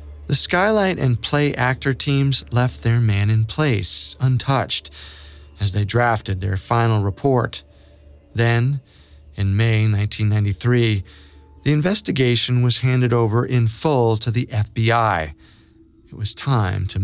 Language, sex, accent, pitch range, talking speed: English, male, American, 100-120 Hz, 125 wpm